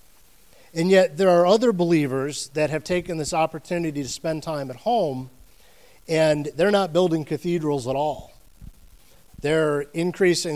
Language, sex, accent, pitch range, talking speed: English, male, American, 145-185 Hz, 140 wpm